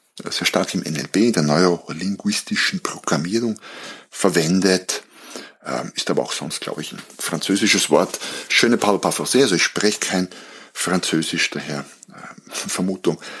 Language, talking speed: German, 125 wpm